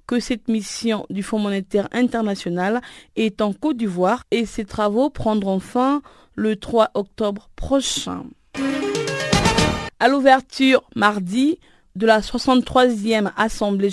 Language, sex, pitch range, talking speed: French, female, 200-250 Hz, 115 wpm